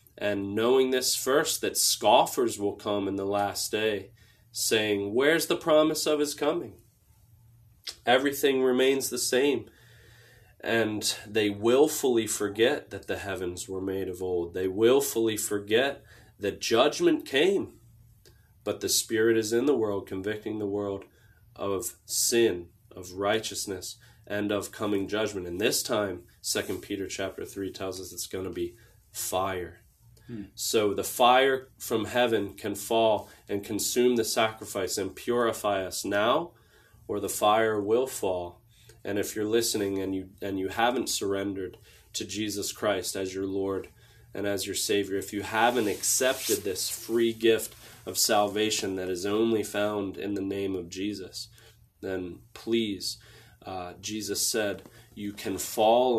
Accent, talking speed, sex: American, 145 wpm, male